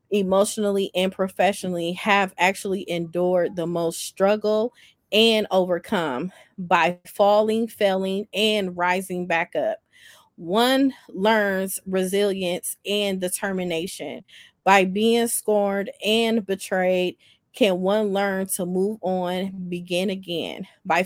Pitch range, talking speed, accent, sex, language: 185-250 Hz, 105 wpm, American, female, English